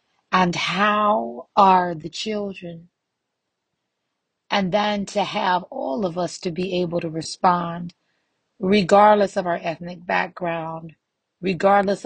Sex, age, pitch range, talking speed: female, 40-59, 175-200 Hz, 115 wpm